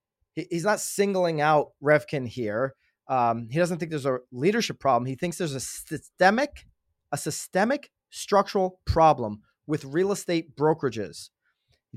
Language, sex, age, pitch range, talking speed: English, male, 30-49, 135-180 Hz, 140 wpm